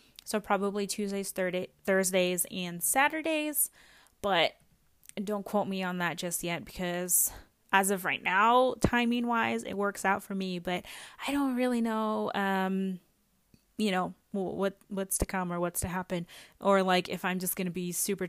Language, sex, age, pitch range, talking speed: English, female, 20-39, 175-205 Hz, 165 wpm